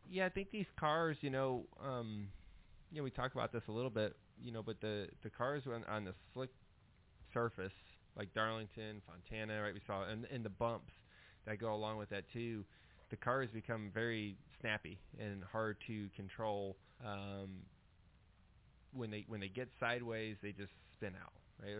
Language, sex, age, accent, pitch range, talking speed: English, male, 20-39, American, 100-120 Hz, 180 wpm